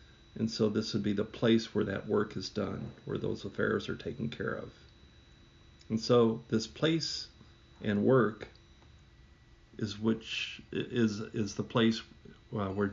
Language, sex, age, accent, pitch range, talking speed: English, male, 50-69, American, 105-120 Hz, 150 wpm